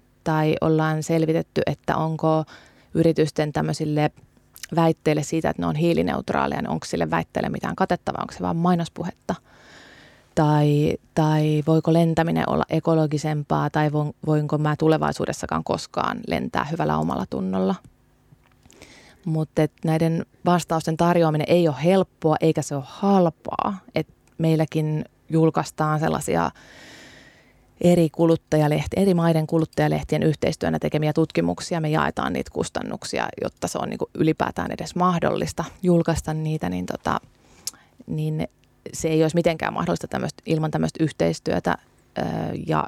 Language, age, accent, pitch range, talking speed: Finnish, 20-39, native, 150-165 Hz, 125 wpm